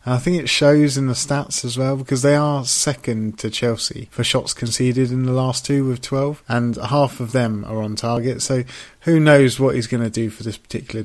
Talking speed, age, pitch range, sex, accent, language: 230 wpm, 30-49, 115-135 Hz, male, British, English